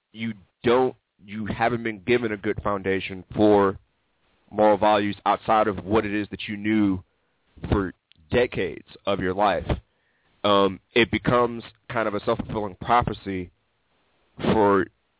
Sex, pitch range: male, 100-115 Hz